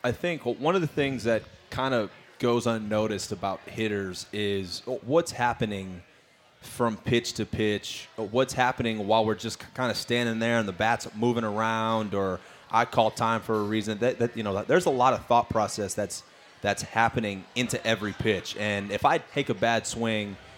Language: English